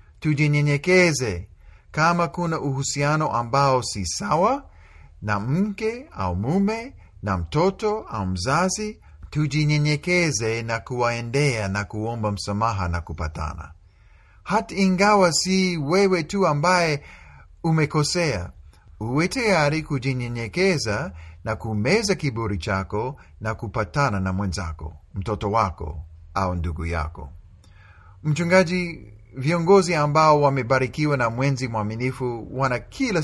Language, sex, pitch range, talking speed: Swahili, male, 100-155 Hz, 100 wpm